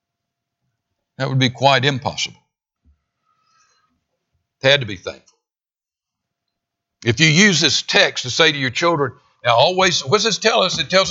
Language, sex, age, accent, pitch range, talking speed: English, male, 60-79, American, 115-175 Hz, 155 wpm